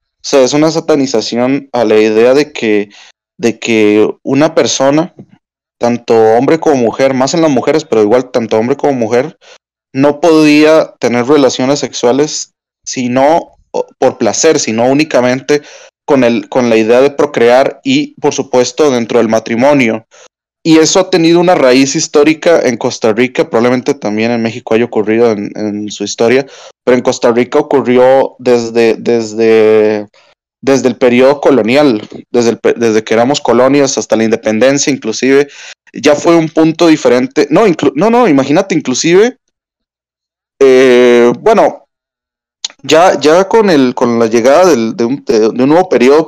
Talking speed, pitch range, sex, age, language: 155 wpm, 115-150 Hz, male, 20-39, Spanish